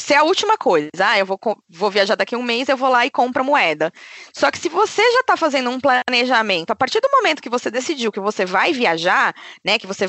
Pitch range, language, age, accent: 205-285 Hz, Portuguese, 20-39, Brazilian